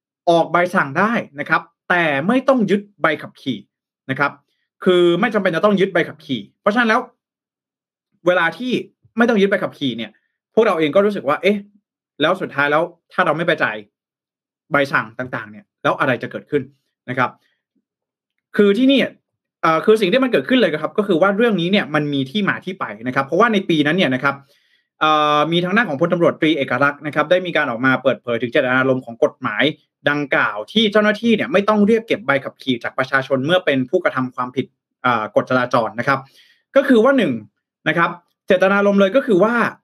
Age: 20-39